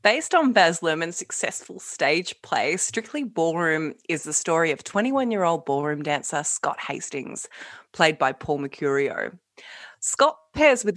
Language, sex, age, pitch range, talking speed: English, female, 20-39, 155-225 Hz, 135 wpm